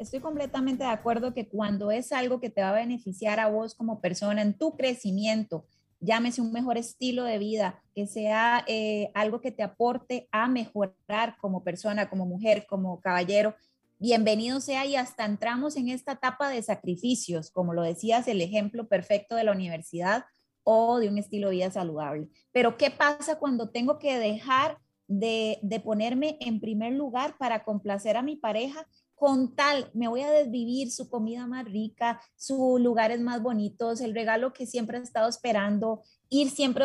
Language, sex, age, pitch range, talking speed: Spanish, female, 30-49, 210-255 Hz, 175 wpm